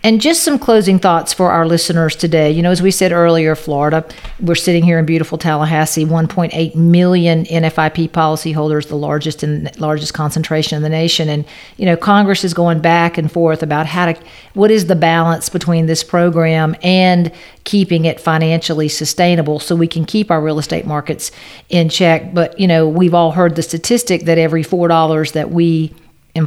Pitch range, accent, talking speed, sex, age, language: 155-175 Hz, American, 195 wpm, female, 50-69, English